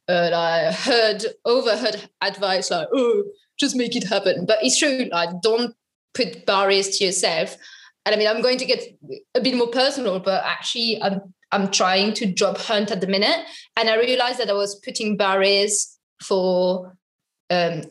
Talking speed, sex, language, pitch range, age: 175 wpm, female, English, 195-260 Hz, 20-39